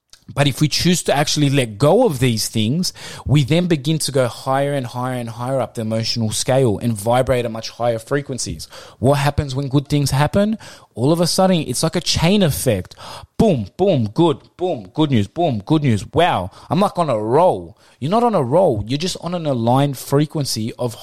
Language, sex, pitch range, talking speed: English, male, 120-150 Hz, 210 wpm